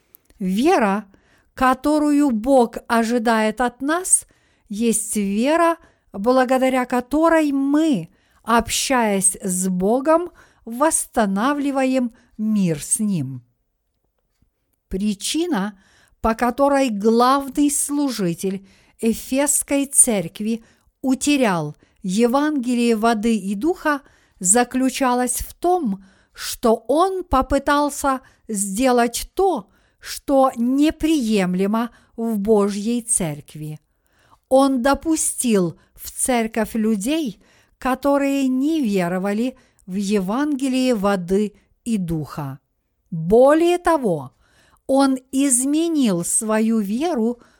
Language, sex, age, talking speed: Russian, female, 50-69, 80 wpm